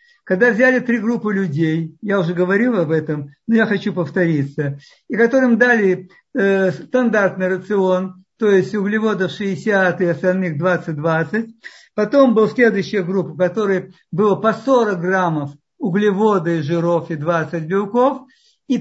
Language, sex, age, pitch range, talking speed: Russian, male, 50-69, 175-235 Hz, 140 wpm